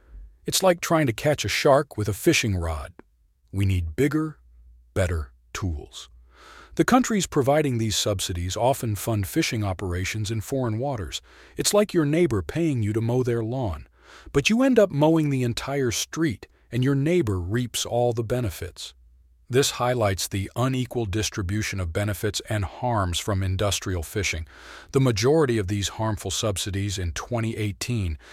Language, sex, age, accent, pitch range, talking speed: English, male, 40-59, American, 95-135 Hz, 155 wpm